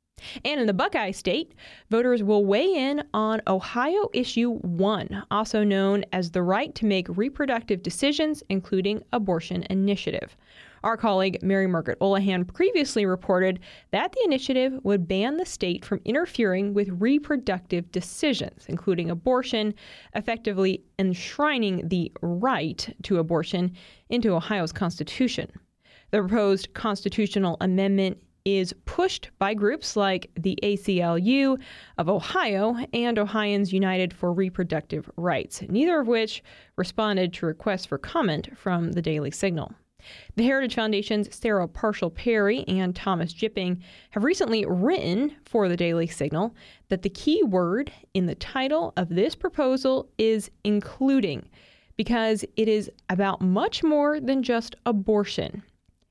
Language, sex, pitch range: English, female, 185-235 Hz